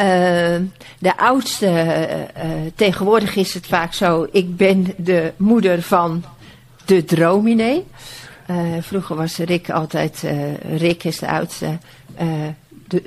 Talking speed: 135 wpm